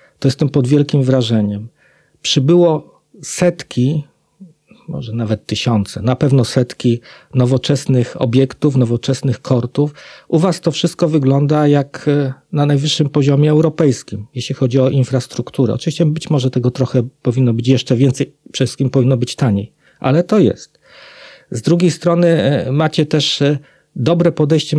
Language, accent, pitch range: Polish, native, 125-150 Hz